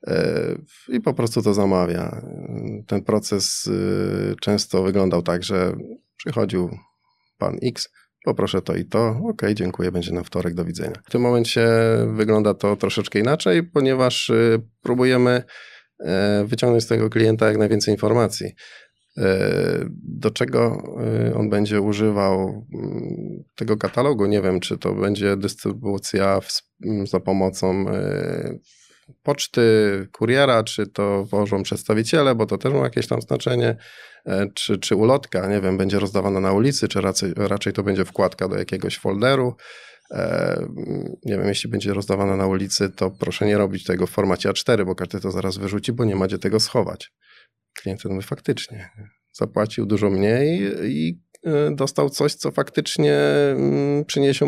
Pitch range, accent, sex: 95-115 Hz, native, male